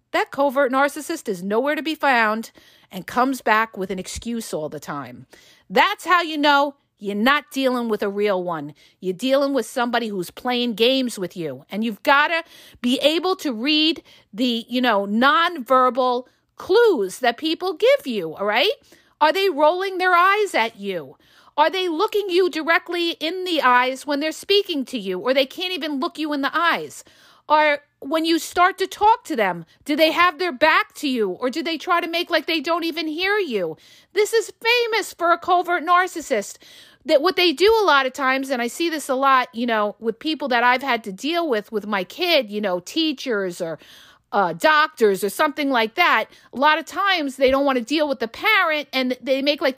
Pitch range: 230-330 Hz